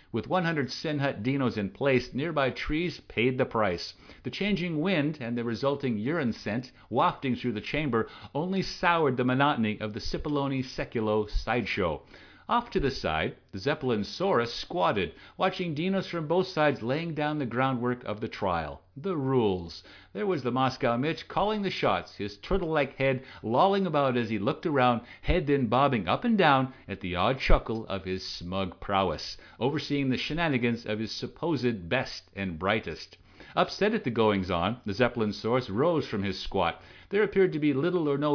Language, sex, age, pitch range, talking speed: English, male, 50-69, 110-150 Hz, 175 wpm